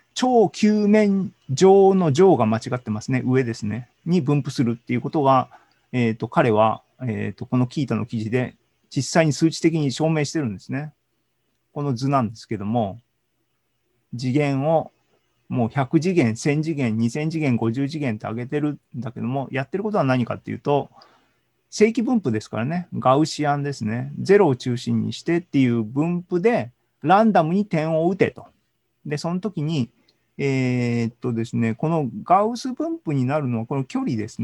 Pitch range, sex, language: 120-175 Hz, male, Japanese